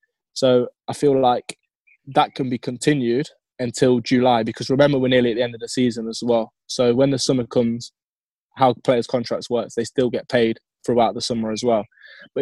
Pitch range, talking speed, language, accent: 120-135 Hz, 200 wpm, English, British